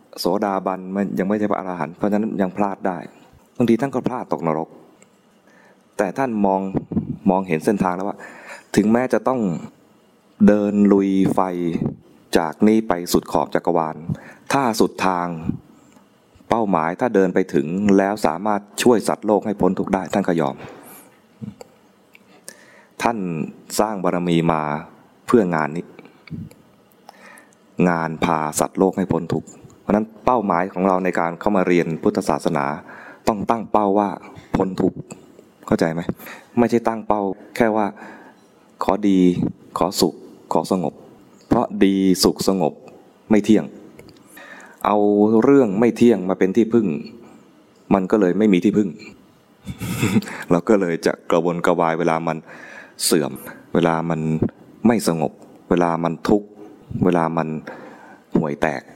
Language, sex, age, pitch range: English, male, 20-39, 85-105 Hz